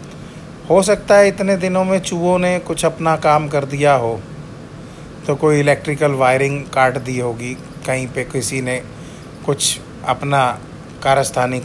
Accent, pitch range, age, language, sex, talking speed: native, 130-160 Hz, 30-49, Hindi, male, 145 wpm